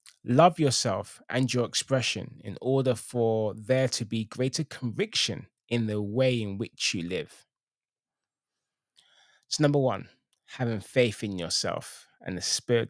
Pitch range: 115-155 Hz